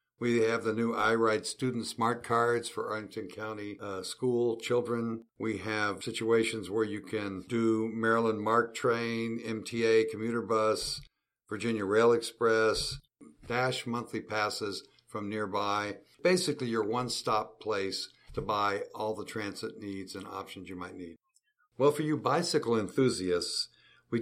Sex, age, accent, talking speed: male, 60-79, American, 140 wpm